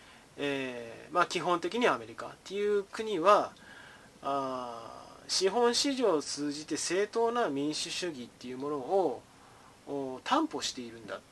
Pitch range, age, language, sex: 135-195 Hz, 20-39, Japanese, male